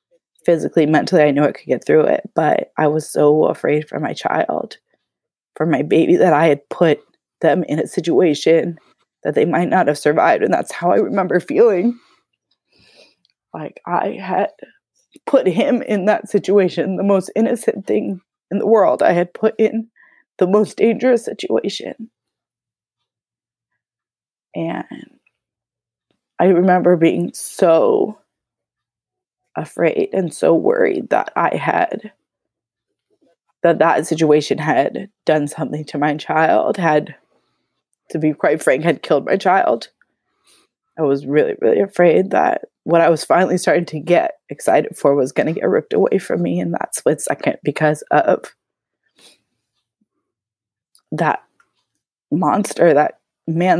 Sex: female